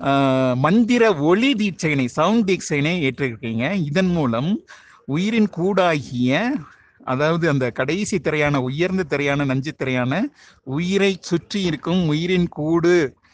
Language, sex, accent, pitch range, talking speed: Tamil, male, native, 135-180 Hz, 100 wpm